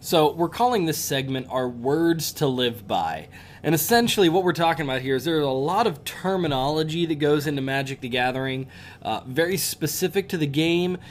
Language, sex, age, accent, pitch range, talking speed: English, male, 20-39, American, 130-165 Hz, 190 wpm